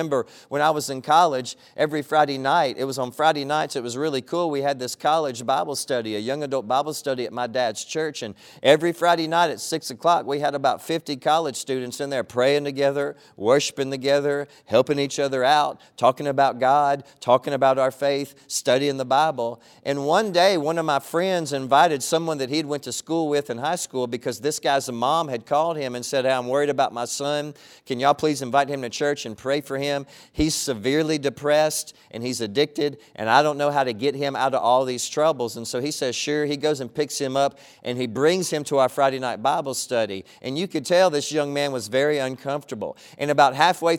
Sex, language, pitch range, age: male, English, 130-150 Hz, 40-59